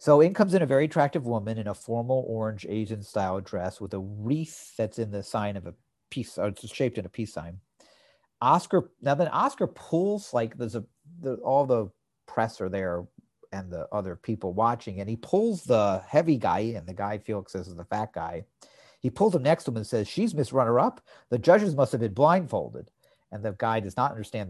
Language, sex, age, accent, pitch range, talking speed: English, male, 50-69, American, 105-145 Hz, 215 wpm